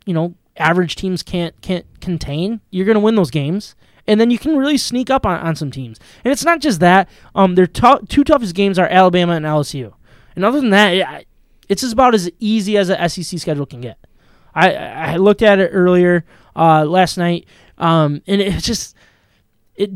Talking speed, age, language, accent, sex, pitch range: 205 wpm, 20-39, English, American, male, 160-200 Hz